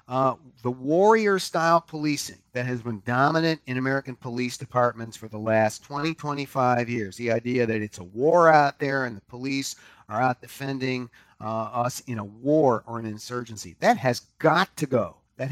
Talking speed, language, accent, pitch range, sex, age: 180 wpm, English, American, 115-145 Hz, male, 50-69